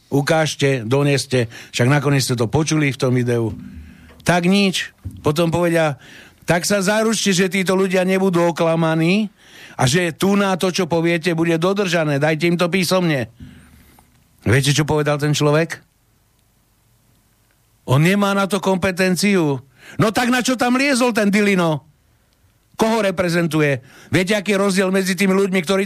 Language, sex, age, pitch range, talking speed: Slovak, male, 60-79, 135-190 Hz, 145 wpm